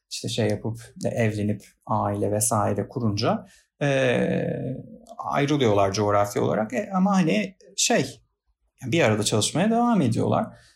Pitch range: 105-140 Hz